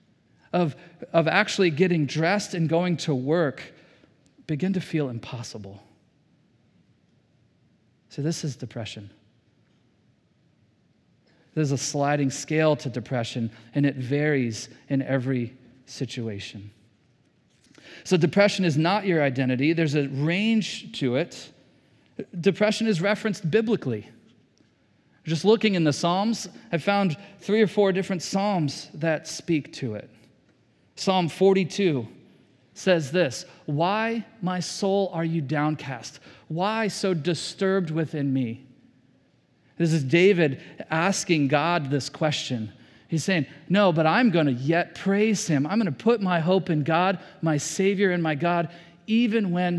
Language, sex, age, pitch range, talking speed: English, male, 40-59, 135-185 Hz, 130 wpm